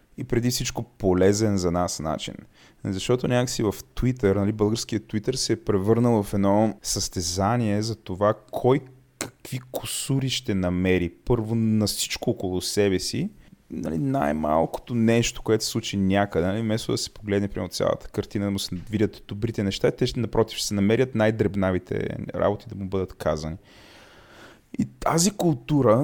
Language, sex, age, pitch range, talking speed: Bulgarian, male, 20-39, 95-120 Hz, 160 wpm